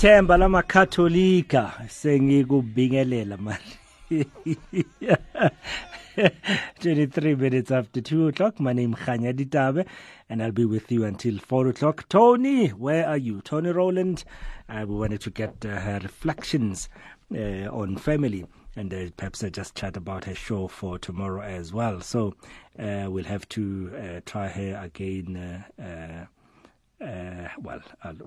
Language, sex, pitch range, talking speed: English, male, 100-150 Hz, 130 wpm